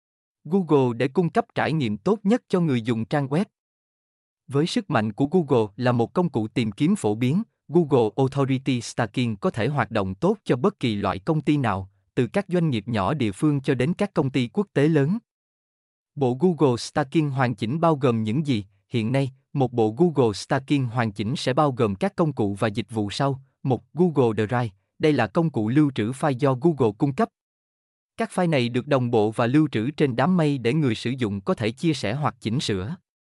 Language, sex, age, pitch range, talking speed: Vietnamese, male, 20-39, 115-160 Hz, 215 wpm